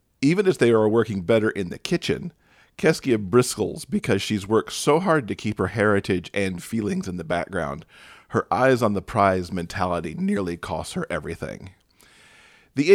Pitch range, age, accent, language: 95-125 Hz, 40-59, American, English